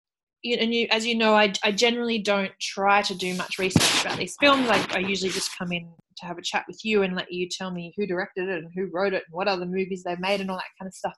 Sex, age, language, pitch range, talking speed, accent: female, 20-39, English, 185-240 Hz, 275 wpm, Australian